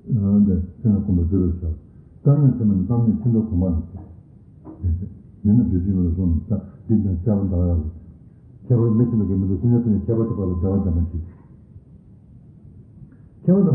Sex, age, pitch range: male, 60-79, 95-120 Hz